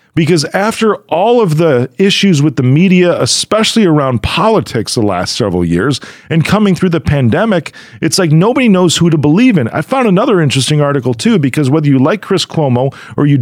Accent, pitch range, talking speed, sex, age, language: American, 140-190 Hz, 190 wpm, male, 40-59, English